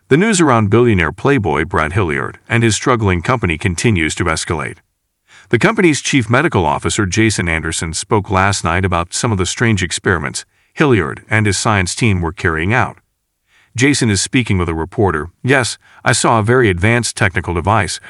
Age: 40-59